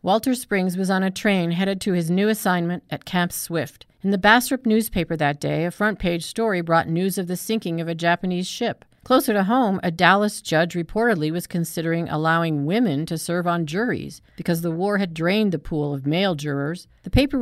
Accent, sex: American, female